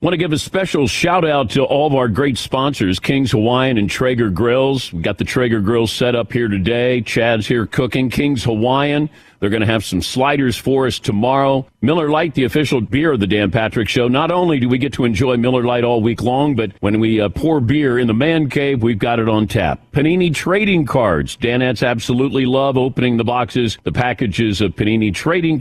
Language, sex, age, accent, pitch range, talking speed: English, male, 50-69, American, 115-140 Hz, 215 wpm